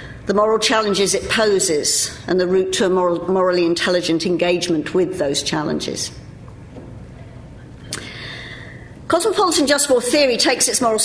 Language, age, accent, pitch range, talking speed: English, 50-69, British, 165-215 Hz, 125 wpm